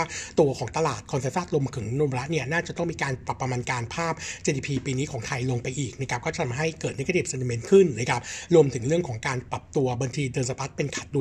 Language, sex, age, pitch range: Thai, male, 60-79, 130-165 Hz